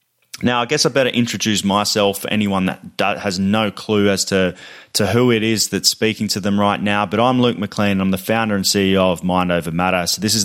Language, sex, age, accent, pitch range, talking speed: English, male, 20-39, Australian, 95-110 Hz, 235 wpm